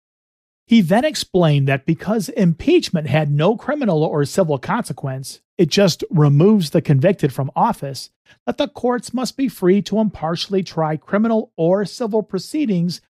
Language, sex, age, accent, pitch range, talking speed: English, male, 40-59, American, 155-215 Hz, 145 wpm